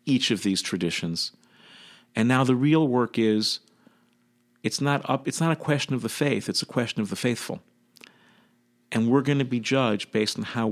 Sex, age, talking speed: male, 50-69, 195 wpm